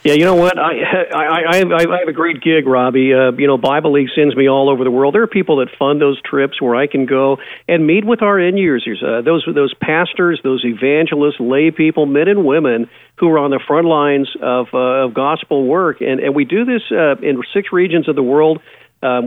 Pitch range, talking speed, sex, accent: 135-180 Hz, 235 wpm, male, American